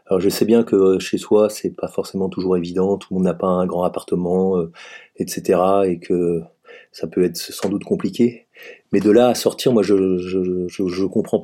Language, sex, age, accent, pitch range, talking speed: French, male, 30-49, French, 90-105 Hz, 210 wpm